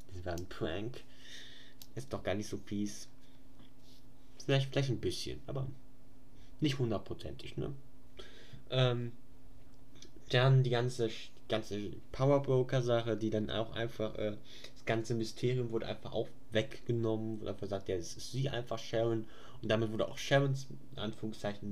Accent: German